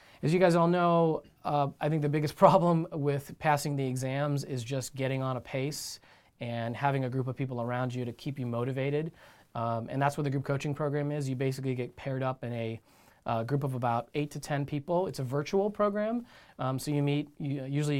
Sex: male